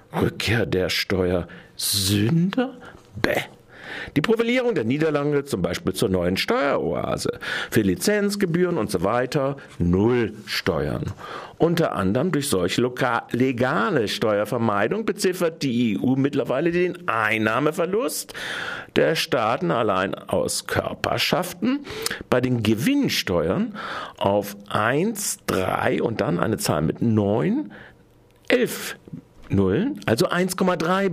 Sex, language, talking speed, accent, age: male, German, 100 wpm, German, 60-79